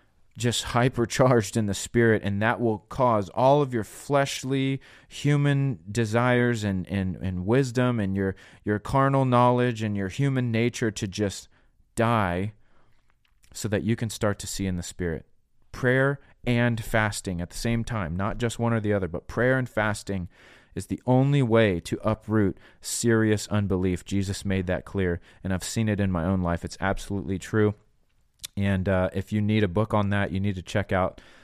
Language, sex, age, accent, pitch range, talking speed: English, male, 30-49, American, 95-115 Hz, 180 wpm